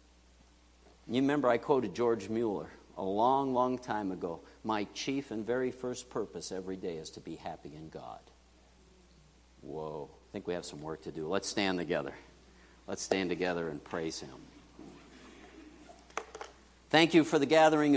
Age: 50-69